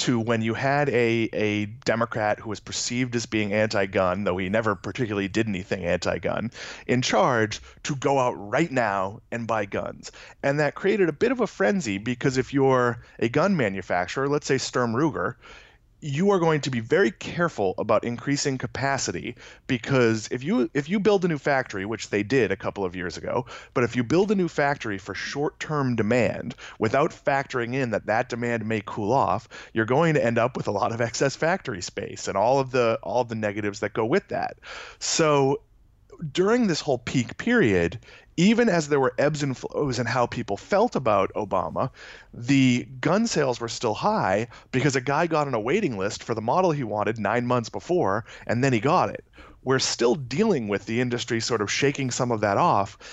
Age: 30-49